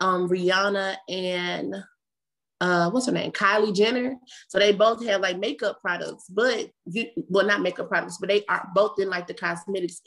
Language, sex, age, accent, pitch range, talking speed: English, female, 20-39, American, 185-220 Hz, 175 wpm